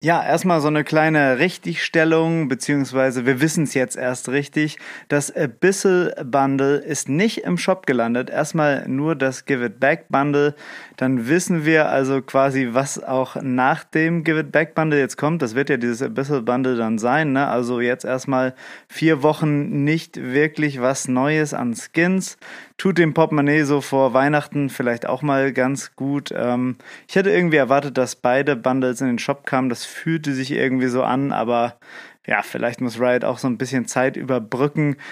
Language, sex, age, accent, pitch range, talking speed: German, male, 30-49, German, 130-160 Hz, 160 wpm